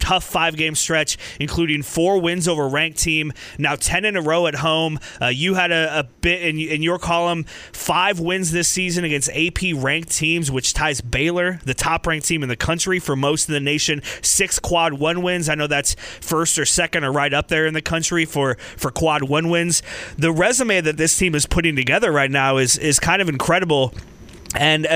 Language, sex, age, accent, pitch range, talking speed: English, male, 30-49, American, 150-180 Hz, 205 wpm